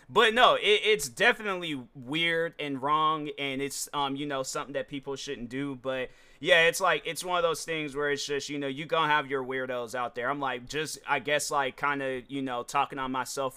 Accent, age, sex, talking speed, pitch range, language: American, 30-49, male, 230 wpm, 130-155 Hz, English